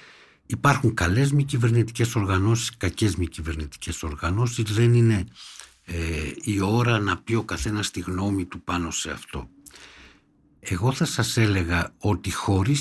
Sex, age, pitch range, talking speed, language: male, 60-79, 85-120 Hz, 135 wpm, Greek